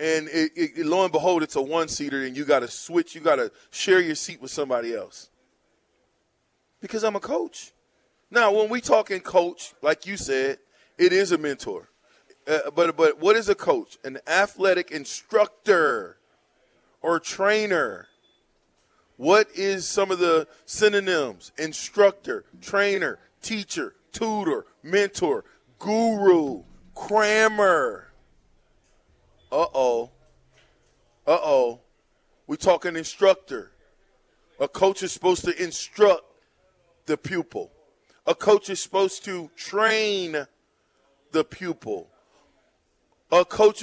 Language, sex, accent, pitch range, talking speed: English, male, American, 175-290 Hz, 120 wpm